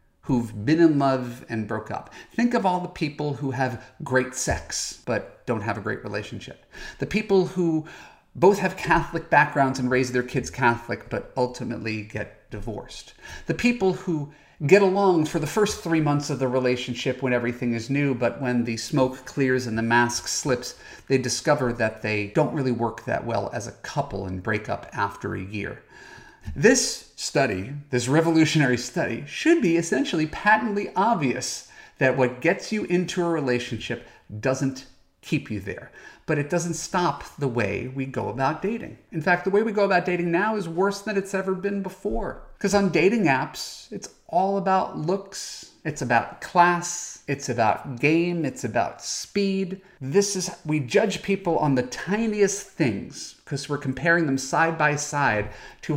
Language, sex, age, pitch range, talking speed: English, male, 40-59, 125-180 Hz, 175 wpm